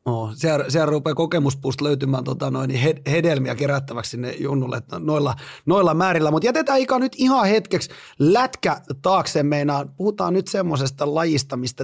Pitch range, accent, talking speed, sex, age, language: 135-175 Hz, native, 145 wpm, male, 30-49, Finnish